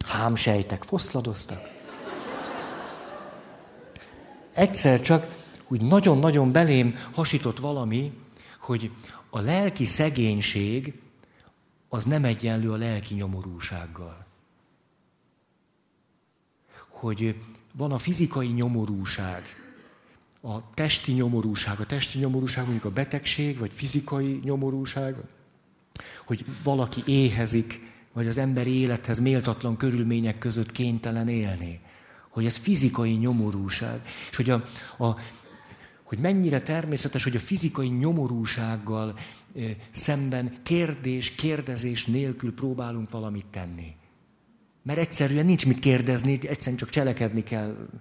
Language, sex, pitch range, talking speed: Hungarian, male, 115-140 Hz, 100 wpm